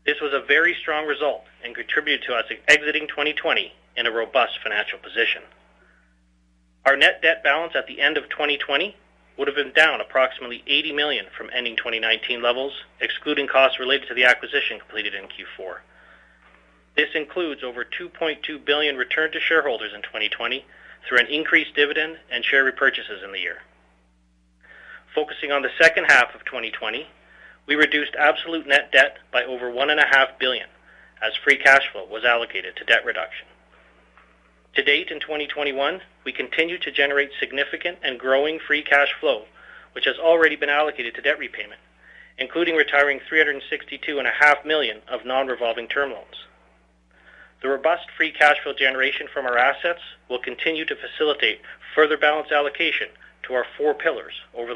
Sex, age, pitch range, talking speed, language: male, 30-49, 120-150 Hz, 165 wpm, English